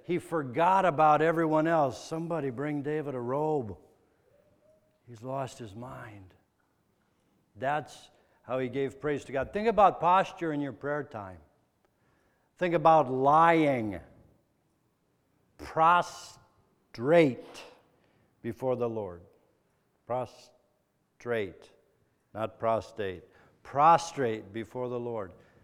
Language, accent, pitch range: English, American, 115-155 Hz